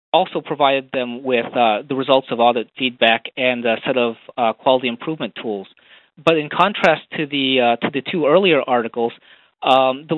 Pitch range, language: 120-155 Hz, English